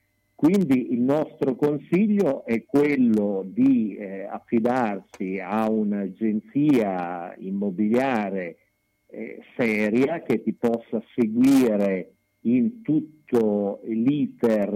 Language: Italian